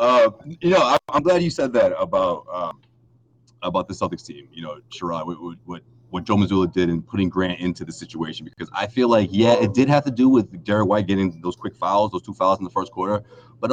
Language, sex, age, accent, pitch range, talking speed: English, male, 30-49, American, 90-115 Hz, 240 wpm